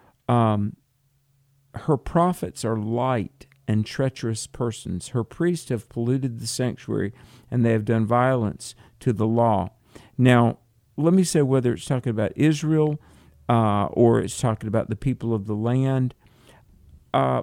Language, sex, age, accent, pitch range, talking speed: English, male, 50-69, American, 110-135 Hz, 145 wpm